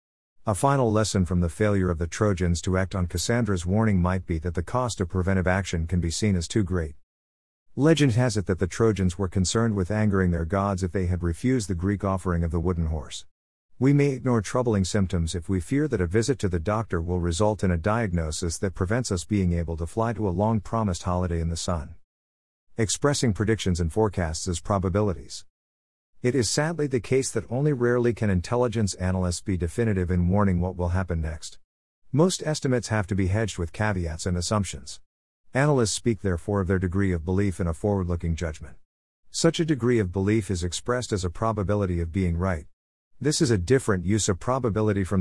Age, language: 50-69, English